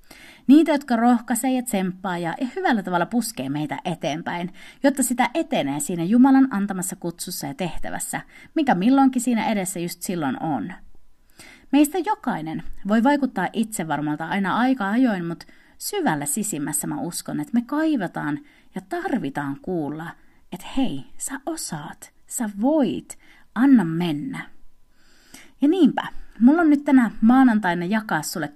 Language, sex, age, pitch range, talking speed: Finnish, female, 30-49, 180-285 Hz, 130 wpm